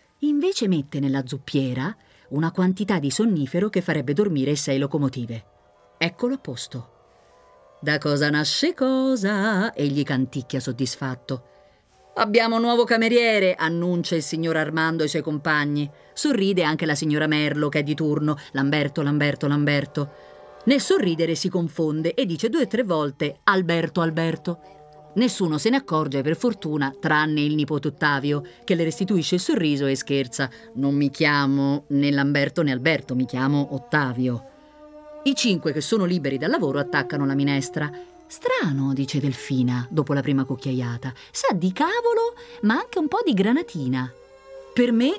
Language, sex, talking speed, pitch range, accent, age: Italian, female, 150 wpm, 140-210 Hz, native, 30-49